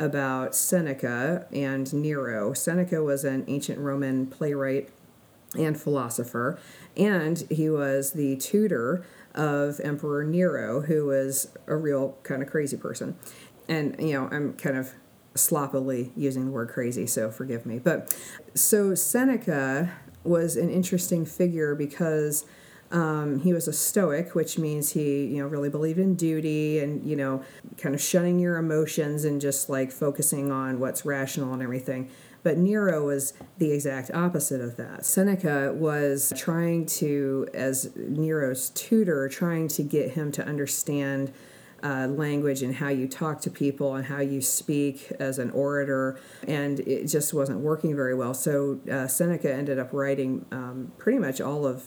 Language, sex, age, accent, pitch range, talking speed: English, female, 50-69, American, 135-155 Hz, 155 wpm